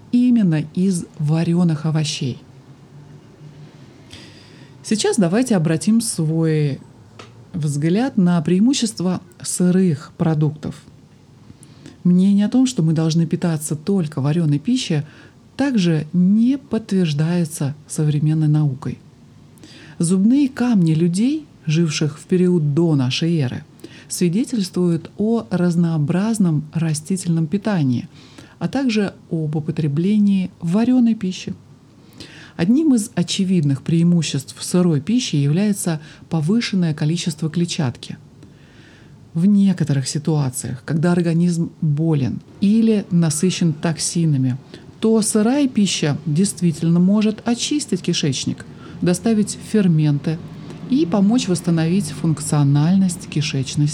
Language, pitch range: Russian, 150-195 Hz